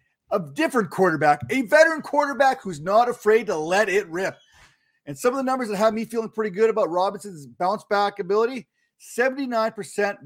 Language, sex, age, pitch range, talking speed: English, male, 40-59, 190-240 Hz, 170 wpm